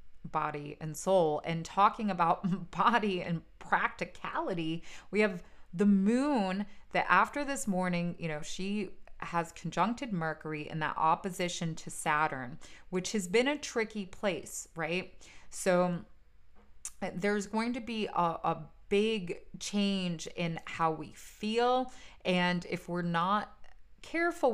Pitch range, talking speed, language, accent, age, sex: 160-205 Hz, 130 wpm, English, American, 20-39, female